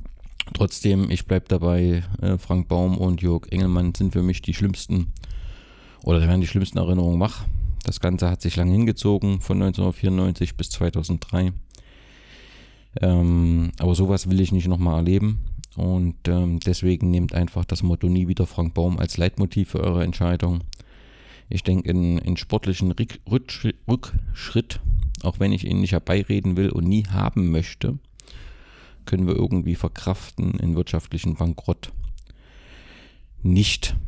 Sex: male